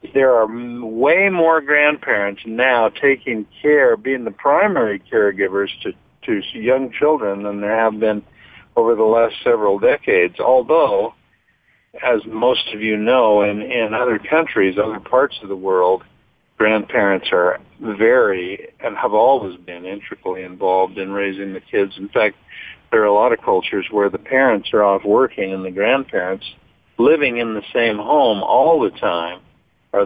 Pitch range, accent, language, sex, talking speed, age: 100-150 Hz, American, English, male, 160 wpm, 50-69